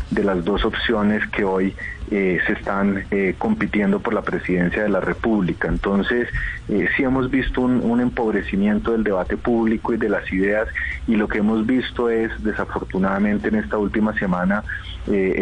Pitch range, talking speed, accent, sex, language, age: 100-115 Hz, 170 wpm, Colombian, male, Spanish, 30-49